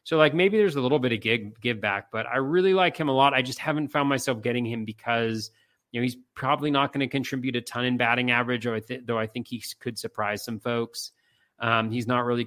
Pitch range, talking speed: 105-125 Hz, 245 wpm